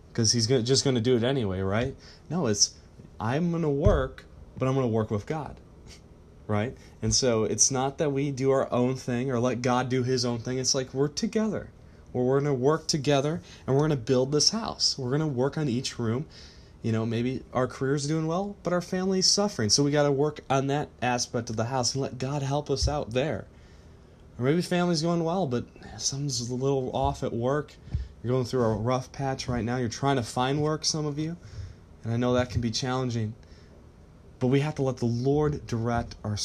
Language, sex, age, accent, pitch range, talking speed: English, male, 20-39, American, 105-140 Hz, 225 wpm